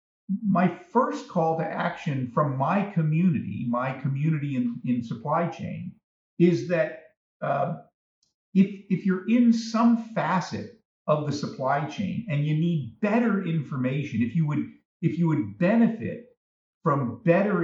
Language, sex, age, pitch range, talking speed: English, male, 50-69, 140-195 Hz, 140 wpm